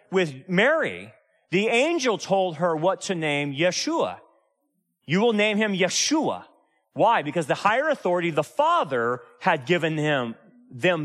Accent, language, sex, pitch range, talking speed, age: American, English, male, 170-230 Hz, 140 wpm, 30-49